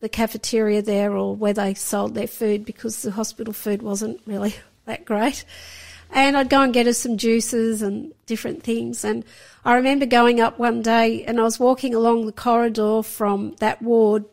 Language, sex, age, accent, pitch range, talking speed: English, female, 50-69, Australian, 220-265 Hz, 190 wpm